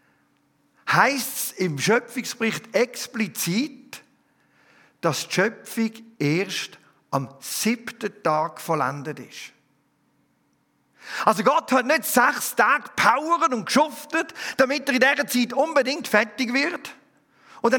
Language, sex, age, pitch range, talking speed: German, male, 50-69, 190-255 Hz, 110 wpm